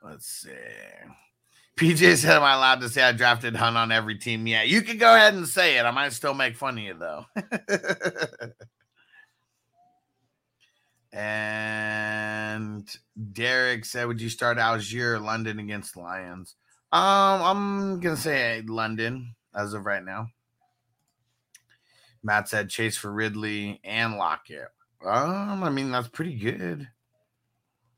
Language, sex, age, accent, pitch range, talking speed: English, male, 30-49, American, 105-125 Hz, 135 wpm